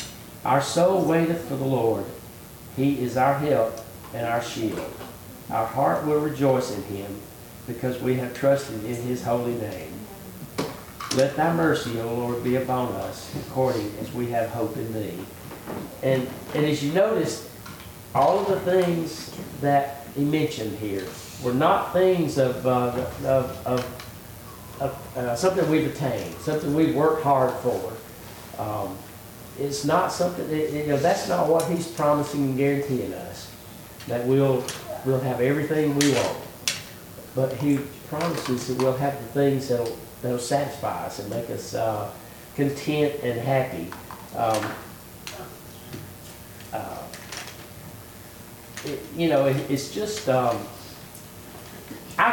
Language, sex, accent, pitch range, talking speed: English, male, American, 115-145 Hz, 140 wpm